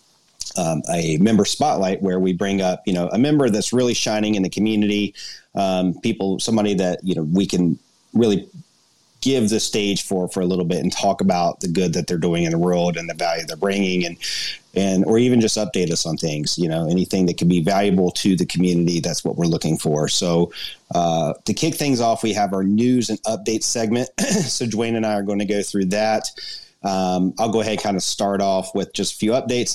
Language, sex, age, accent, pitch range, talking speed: English, male, 30-49, American, 90-105 Hz, 225 wpm